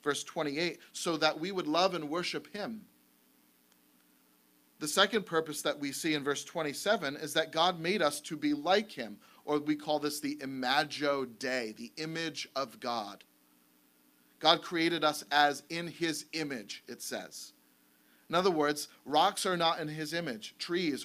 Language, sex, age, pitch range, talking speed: English, male, 40-59, 140-170 Hz, 165 wpm